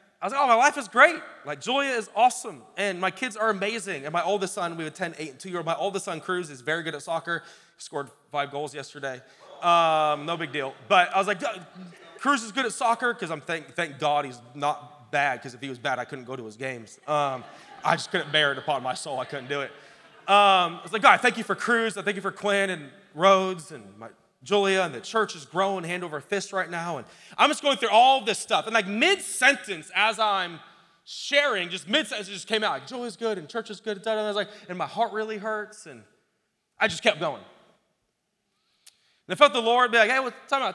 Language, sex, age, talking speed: English, male, 20-39, 245 wpm